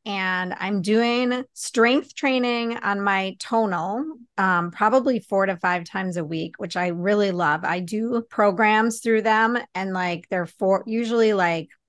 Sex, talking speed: female, 155 wpm